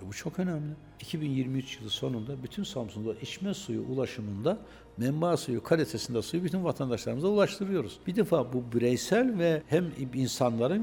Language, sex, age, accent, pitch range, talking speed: Turkish, male, 60-79, native, 115-175 Hz, 140 wpm